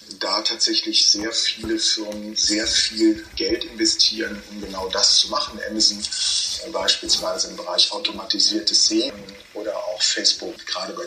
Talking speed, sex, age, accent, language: 140 wpm, male, 30-49, German, German